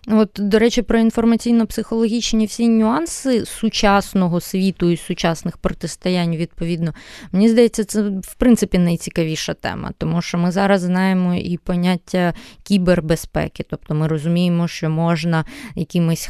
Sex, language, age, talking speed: female, Ukrainian, 20-39, 125 wpm